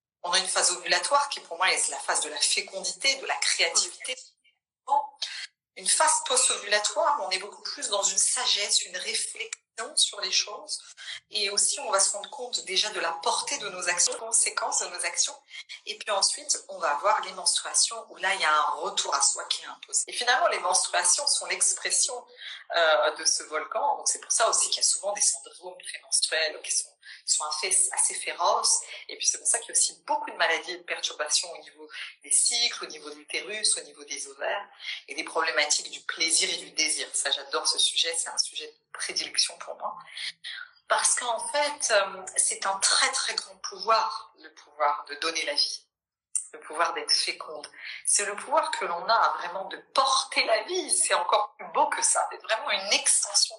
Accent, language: French, French